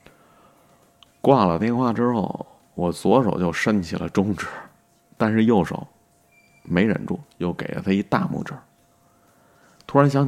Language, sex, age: Chinese, male, 30-49